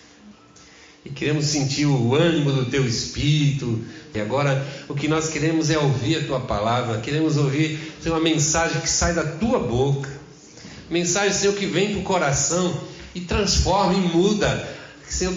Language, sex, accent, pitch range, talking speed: Portuguese, male, Brazilian, 140-180 Hz, 155 wpm